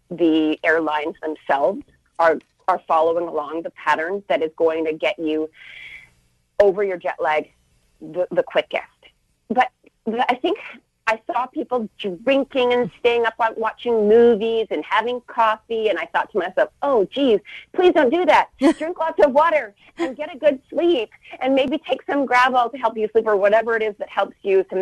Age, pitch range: 30-49, 175-245 Hz